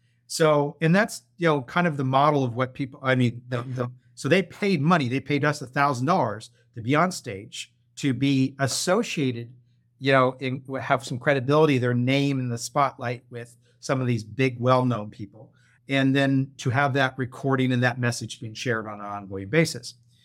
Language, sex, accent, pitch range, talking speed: English, male, American, 120-140 Hz, 190 wpm